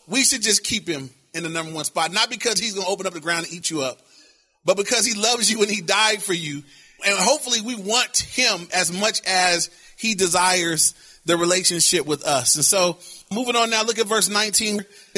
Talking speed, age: 220 wpm, 30-49